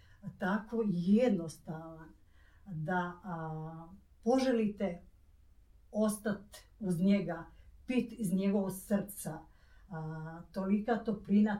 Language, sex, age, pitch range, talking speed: Croatian, female, 50-69, 170-205 Hz, 70 wpm